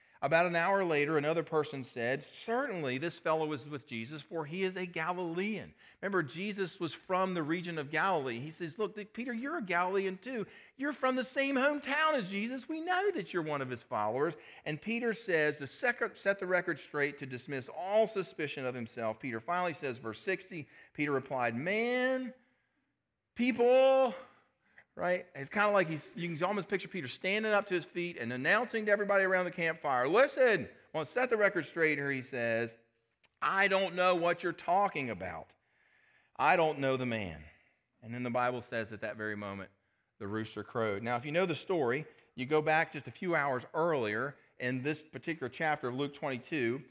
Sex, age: male, 40-59